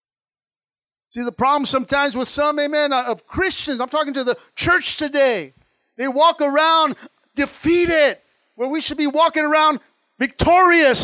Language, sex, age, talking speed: English, male, 50-69, 140 wpm